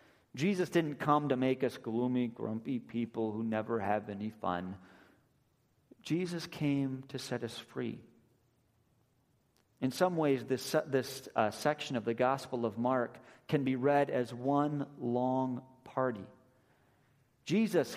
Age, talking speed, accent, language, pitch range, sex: 40-59, 135 wpm, American, English, 125-185 Hz, male